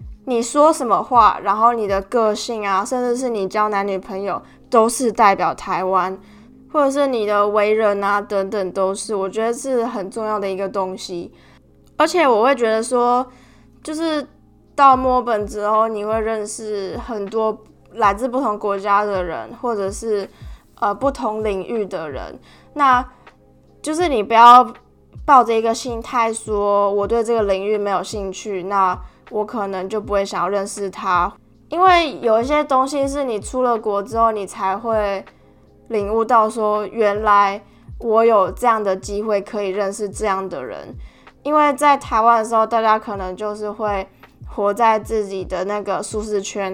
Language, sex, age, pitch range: Chinese, female, 20-39, 200-230 Hz